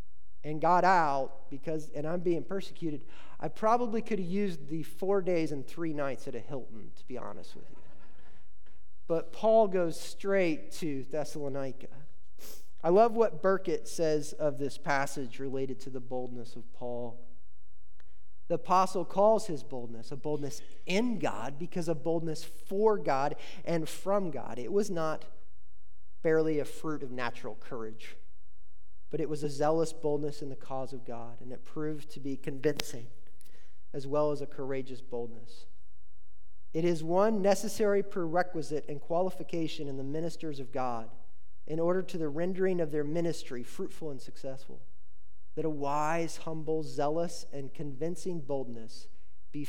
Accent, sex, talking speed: American, male, 155 wpm